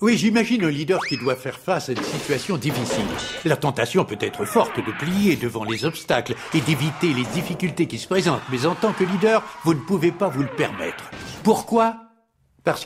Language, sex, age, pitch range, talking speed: French, male, 60-79, 140-200 Hz, 200 wpm